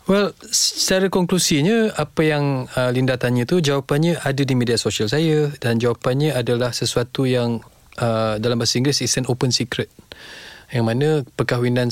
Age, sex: 20-39, male